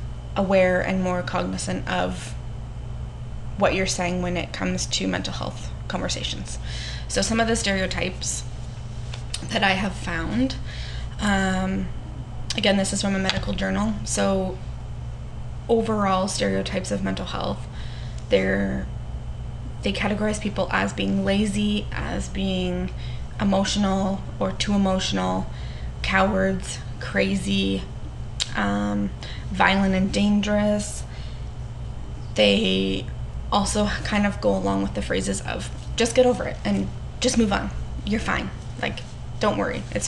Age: 20-39